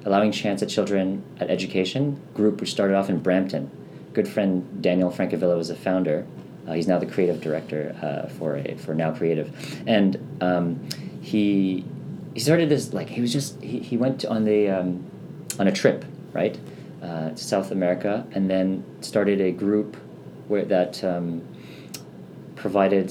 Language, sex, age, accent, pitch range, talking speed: English, male, 40-59, American, 85-110 Hz, 165 wpm